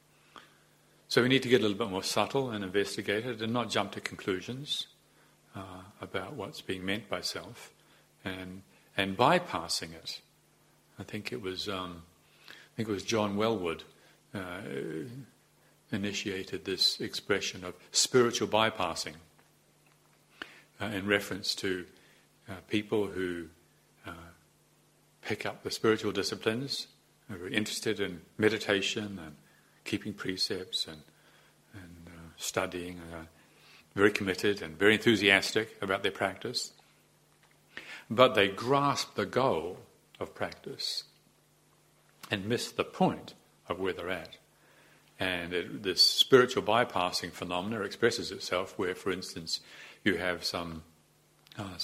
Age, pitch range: 50-69, 90-110 Hz